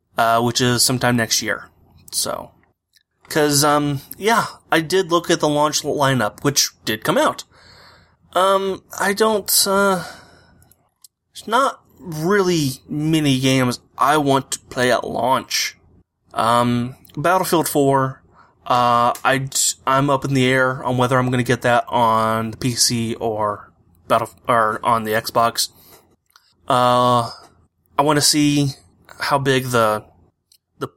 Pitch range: 115-140 Hz